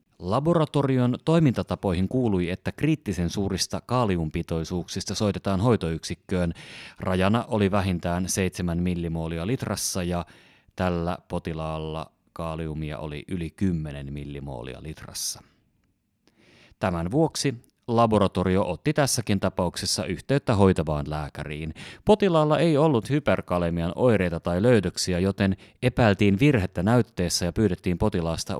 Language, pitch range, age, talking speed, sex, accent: Finnish, 85-110 Hz, 30-49, 100 wpm, male, native